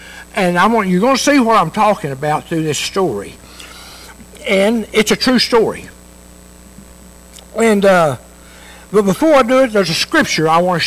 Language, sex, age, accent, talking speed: English, male, 60-79, American, 175 wpm